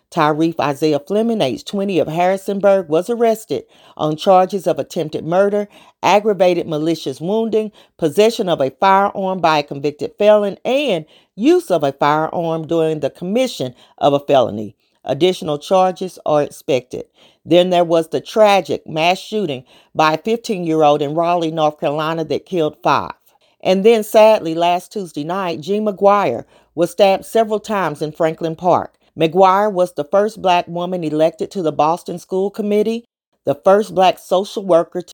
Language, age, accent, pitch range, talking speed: English, 40-59, American, 155-195 Hz, 150 wpm